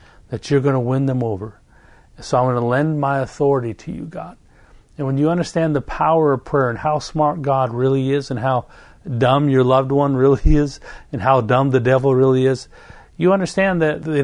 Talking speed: 210 wpm